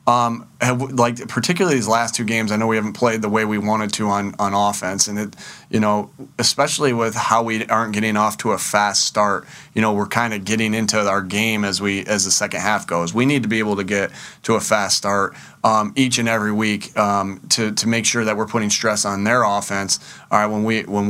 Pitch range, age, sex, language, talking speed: 105-120 Hz, 30-49, male, English, 240 wpm